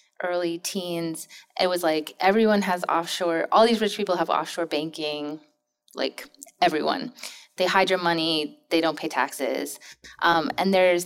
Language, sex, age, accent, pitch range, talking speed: English, female, 20-39, American, 160-195 Hz, 150 wpm